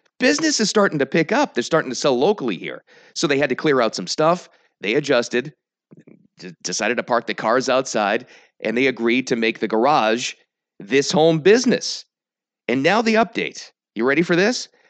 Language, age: English, 40-59